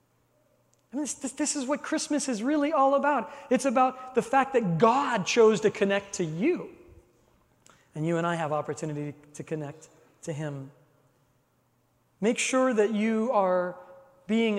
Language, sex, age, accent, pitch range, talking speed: English, male, 40-59, American, 170-250 Hz, 150 wpm